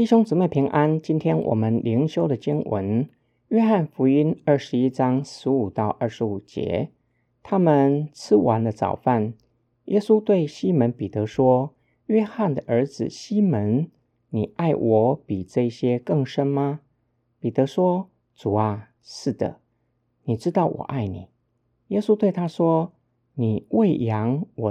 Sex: male